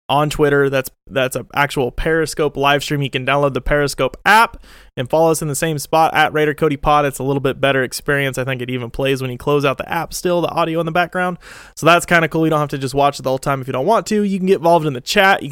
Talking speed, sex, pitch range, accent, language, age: 295 wpm, male, 135-165 Hz, American, English, 20-39